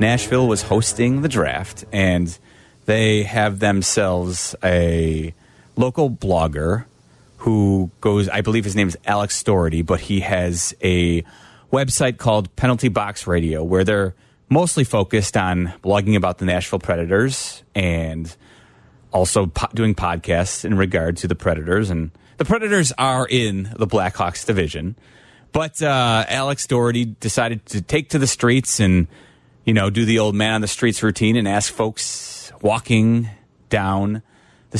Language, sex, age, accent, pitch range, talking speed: English, male, 30-49, American, 95-120 Hz, 145 wpm